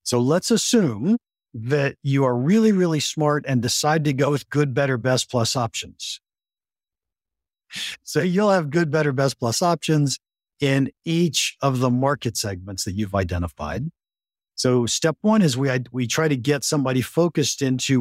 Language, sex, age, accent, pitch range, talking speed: English, male, 50-69, American, 115-140 Hz, 160 wpm